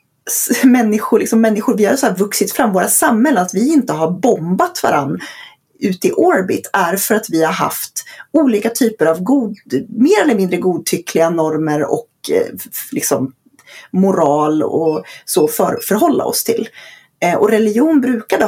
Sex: female